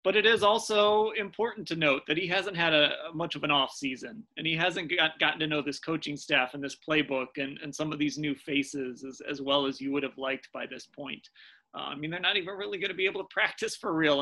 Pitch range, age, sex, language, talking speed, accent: 145-190 Hz, 30-49, male, English, 260 wpm, American